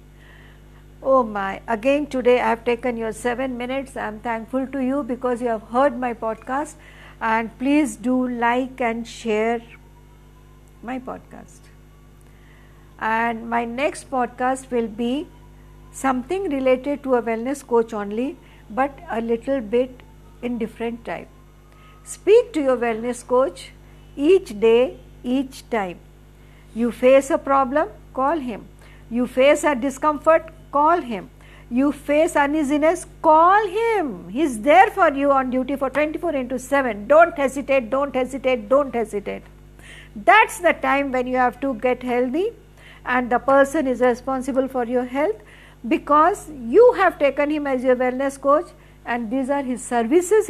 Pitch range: 235-290 Hz